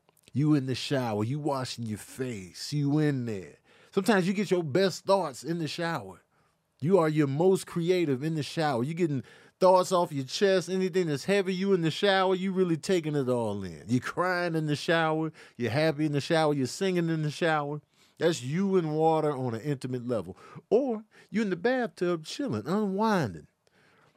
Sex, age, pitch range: male, 50-69, 135-195 Hz